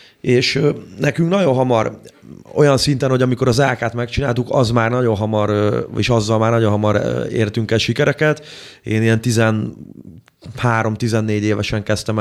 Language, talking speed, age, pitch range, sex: Hungarian, 140 wpm, 30-49, 100-120 Hz, male